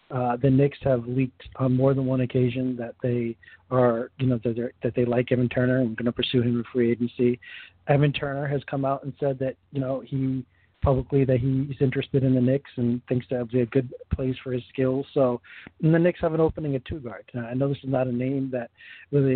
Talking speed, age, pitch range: 240 wpm, 40-59, 125-140 Hz